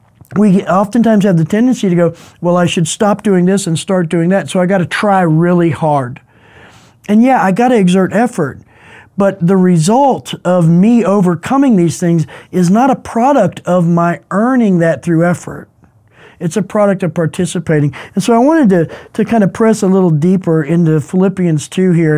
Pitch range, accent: 165-210 Hz, American